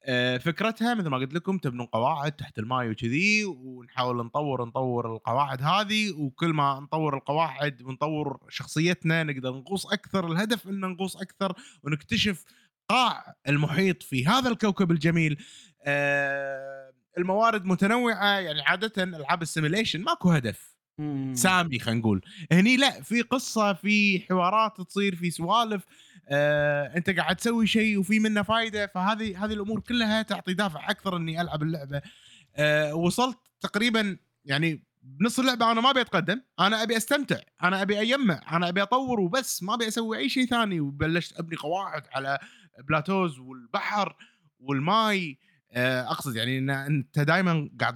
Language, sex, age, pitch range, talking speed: Arabic, male, 20-39, 140-205 Hz, 140 wpm